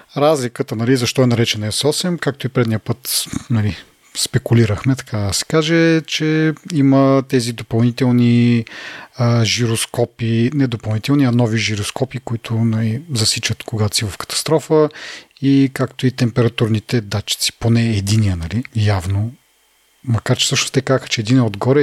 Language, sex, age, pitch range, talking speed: Bulgarian, male, 40-59, 110-135 Hz, 140 wpm